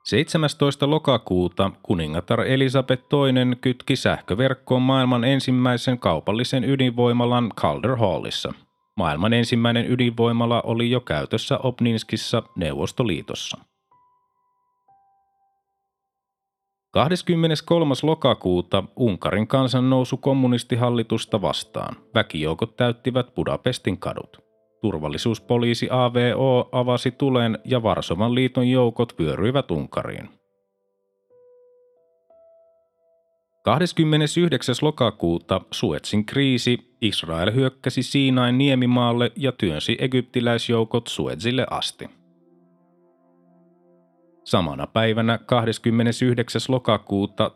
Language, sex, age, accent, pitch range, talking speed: Finnish, male, 30-49, native, 110-140 Hz, 75 wpm